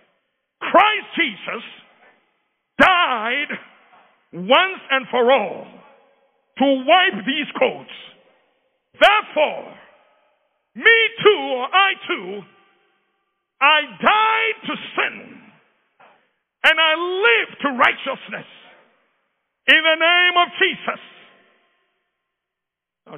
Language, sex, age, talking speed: English, male, 50-69, 85 wpm